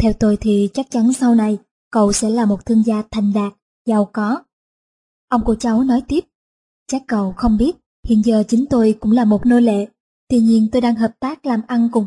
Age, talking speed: 20-39, 220 wpm